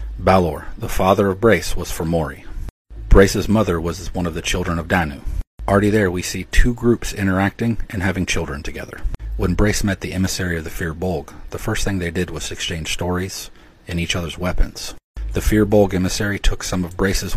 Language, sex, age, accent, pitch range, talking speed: English, male, 40-59, American, 80-95 Hz, 190 wpm